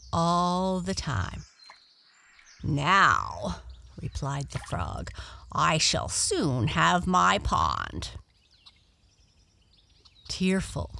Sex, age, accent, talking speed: female, 50-69, American, 75 wpm